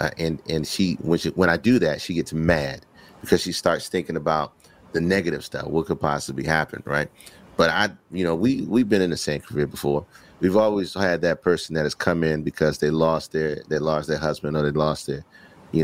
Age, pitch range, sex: 30-49, 80-115 Hz, male